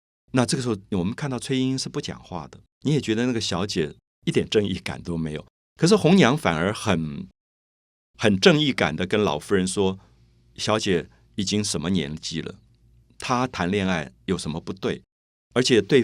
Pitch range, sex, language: 85-130 Hz, male, Chinese